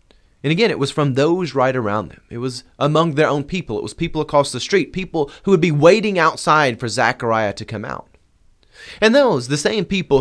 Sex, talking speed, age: male, 215 wpm, 30-49